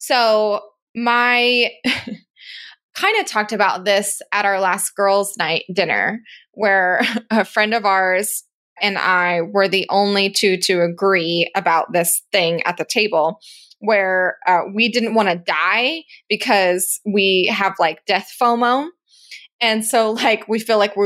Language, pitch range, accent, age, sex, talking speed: English, 195-240 Hz, American, 20-39, female, 150 wpm